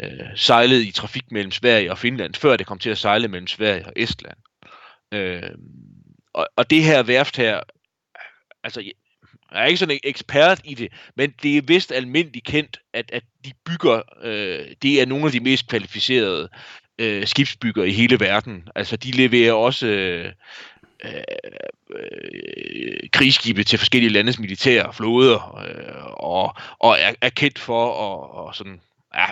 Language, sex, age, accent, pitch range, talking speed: Danish, male, 30-49, native, 110-140 Hz, 165 wpm